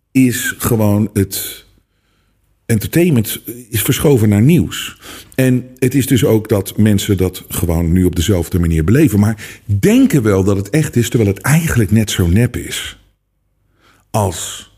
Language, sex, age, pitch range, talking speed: Dutch, male, 50-69, 100-135 Hz, 150 wpm